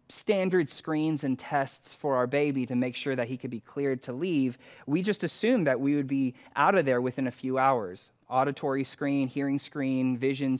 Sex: male